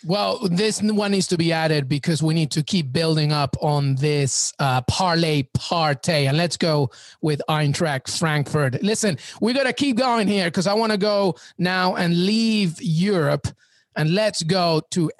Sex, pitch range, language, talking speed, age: male, 150-195 Hz, English, 180 wpm, 30-49